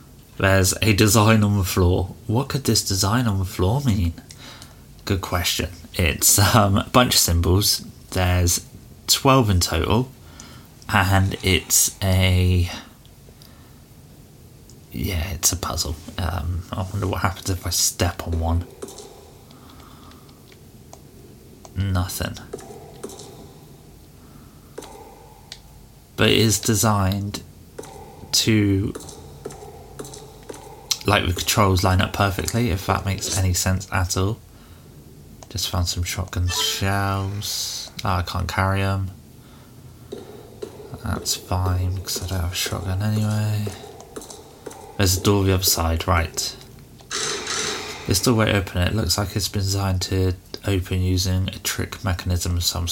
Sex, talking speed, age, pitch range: male, 120 wpm, 30-49, 90-105 Hz